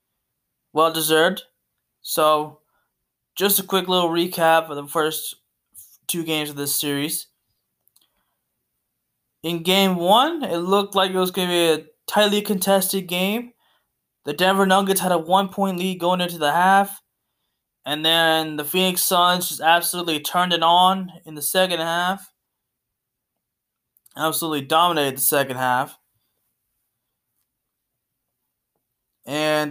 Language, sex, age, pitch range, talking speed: English, male, 20-39, 150-185 Hz, 125 wpm